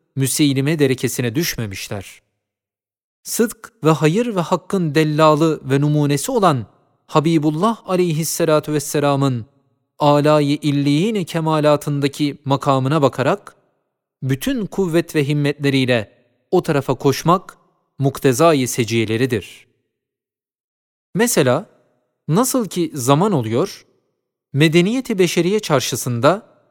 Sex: male